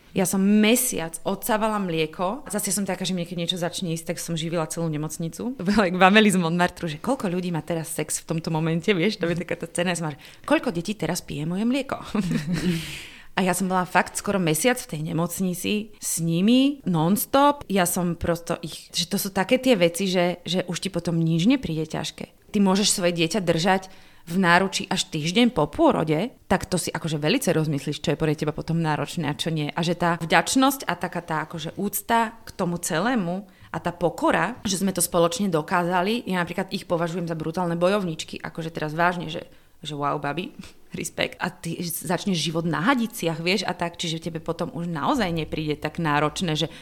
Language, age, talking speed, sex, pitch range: Slovak, 30-49, 200 wpm, female, 165-195 Hz